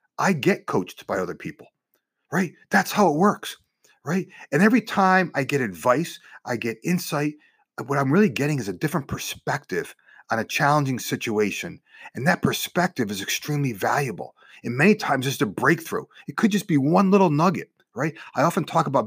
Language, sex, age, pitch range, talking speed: English, male, 30-49, 140-200 Hz, 180 wpm